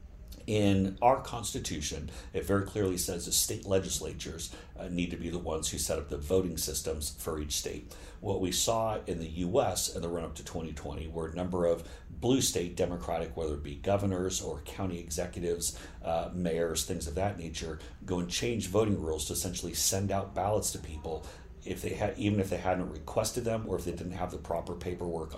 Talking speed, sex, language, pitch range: 200 wpm, male, English, 80-95 Hz